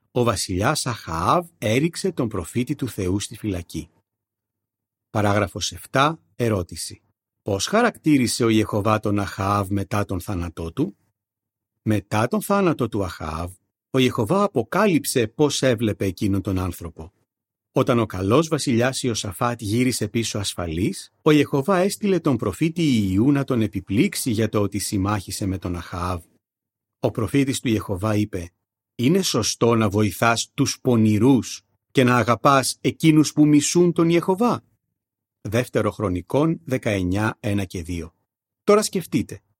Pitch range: 100-130 Hz